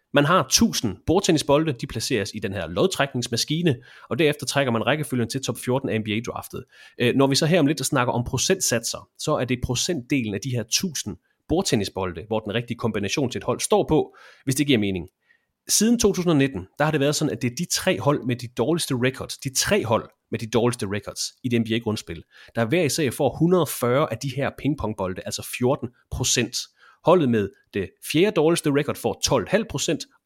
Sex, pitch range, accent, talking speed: male, 115-150 Hz, Danish, 195 wpm